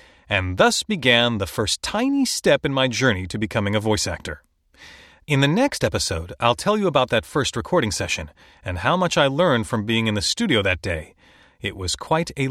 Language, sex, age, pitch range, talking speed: English, male, 30-49, 100-155 Hz, 205 wpm